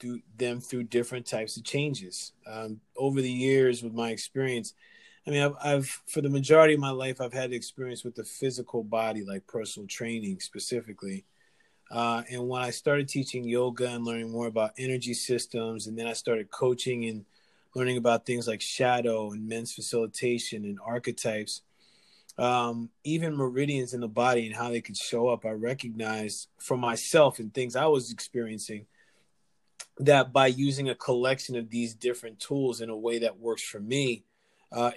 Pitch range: 115-130 Hz